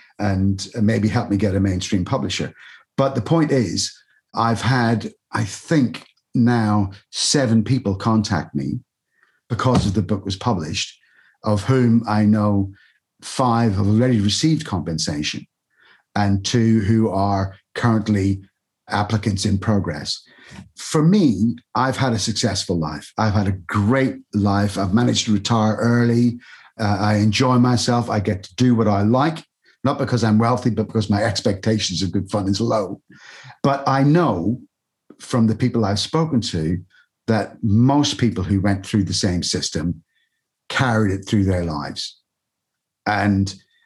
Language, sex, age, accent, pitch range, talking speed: English, male, 50-69, British, 100-120 Hz, 150 wpm